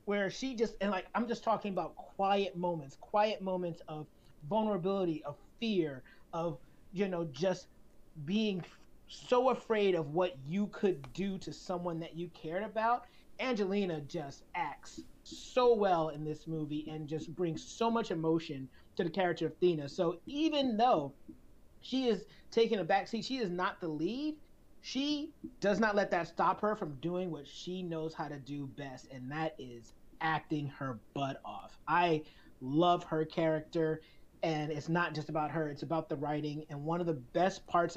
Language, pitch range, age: English, 160-205 Hz, 30-49